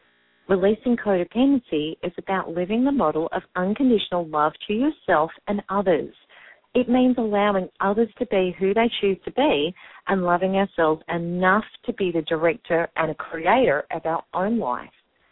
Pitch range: 165-220 Hz